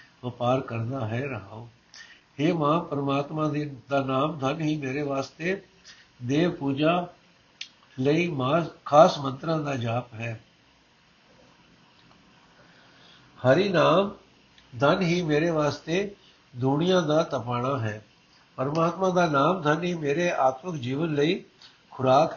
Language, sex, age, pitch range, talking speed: Punjabi, male, 60-79, 135-170 Hz, 115 wpm